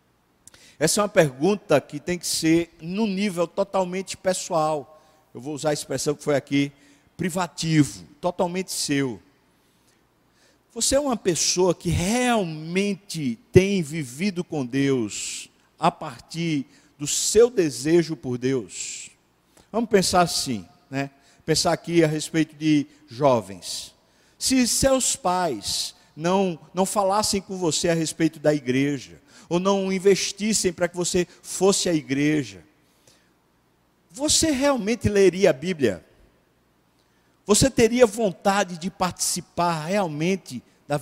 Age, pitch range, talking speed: 50-69, 150-200 Hz, 120 wpm